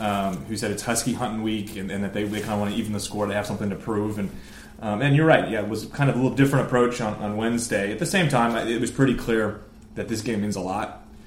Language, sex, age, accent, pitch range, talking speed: English, male, 20-39, American, 100-115 Hz, 295 wpm